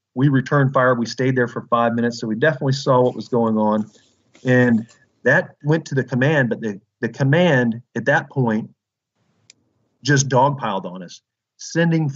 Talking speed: 175 wpm